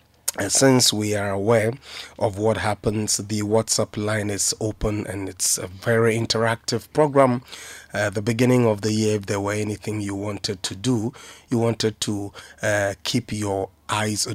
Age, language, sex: 30-49, English, male